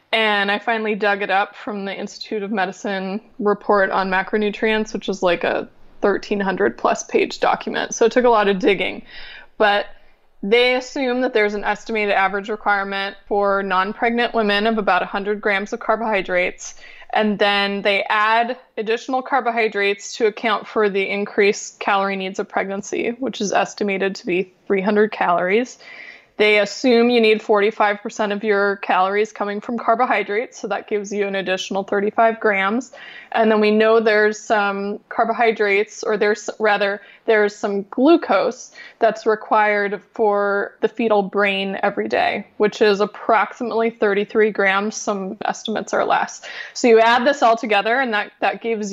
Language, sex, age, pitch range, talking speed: English, female, 20-39, 200-225 Hz, 160 wpm